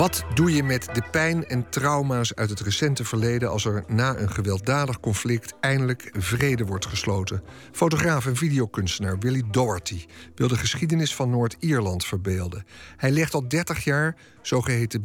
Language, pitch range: Dutch, 110-140 Hz